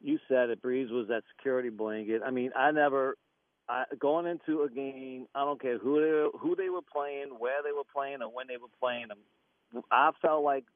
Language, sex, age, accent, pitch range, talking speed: English, male, 50-69, American, 120-155 Hz, 225 wpm